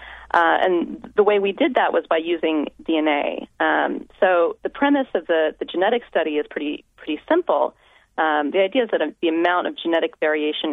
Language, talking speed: English, 190 wpm